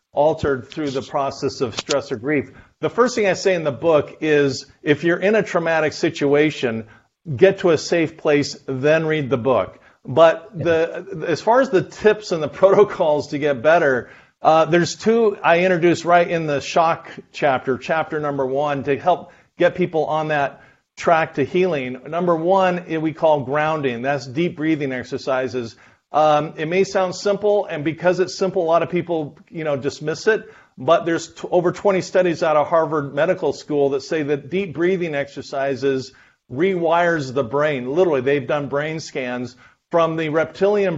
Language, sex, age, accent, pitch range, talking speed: English, male, 50-69, American, 140-175 Hz, 175 wpm